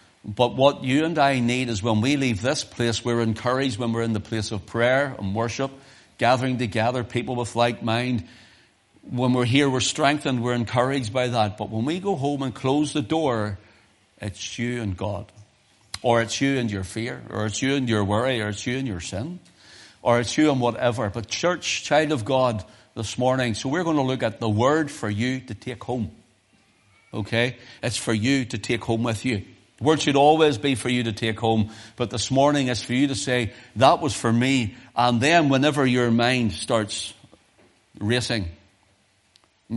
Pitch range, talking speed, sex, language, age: 110-135 Hz, 200 wpm, male, English, 60-79